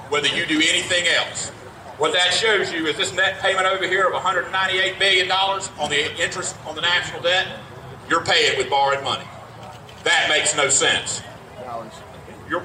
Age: 40-59